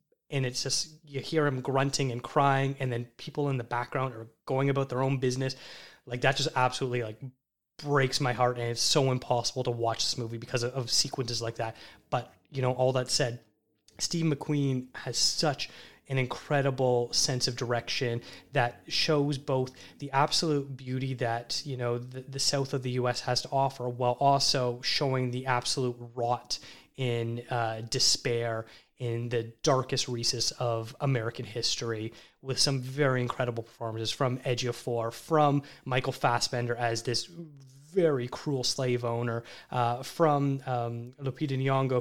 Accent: American